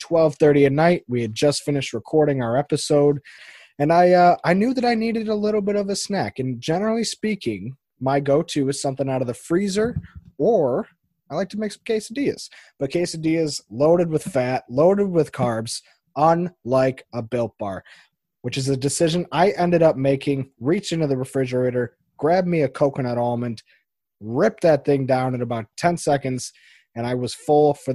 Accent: American